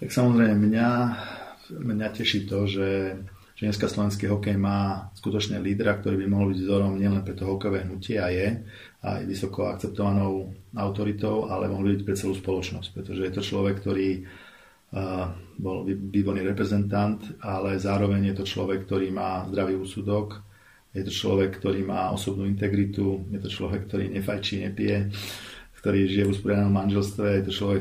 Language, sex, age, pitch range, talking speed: Slovak, male, 40-59, 95-100 Hz, 160 wpm